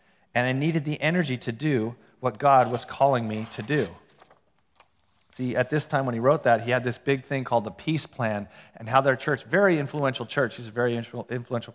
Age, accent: 40-59, American